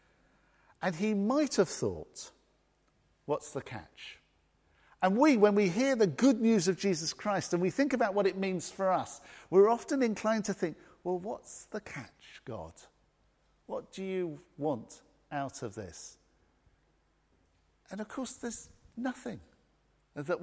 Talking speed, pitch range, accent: 150 wpm, 135-220 Hz, British